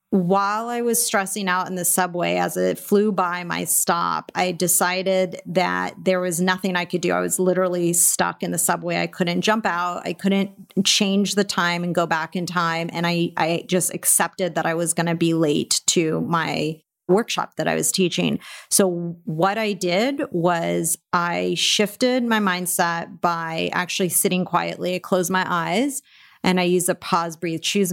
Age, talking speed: 30-49, 185 wpm